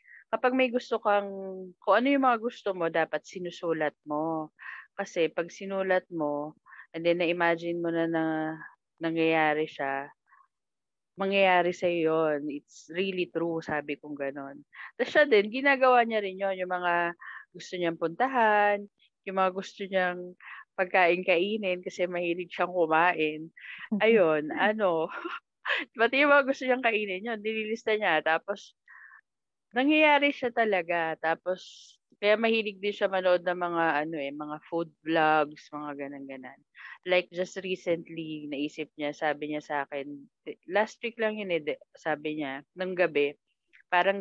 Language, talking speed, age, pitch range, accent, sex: English, 135 wpm, 20-39, 160-205 Hz, Filipino, female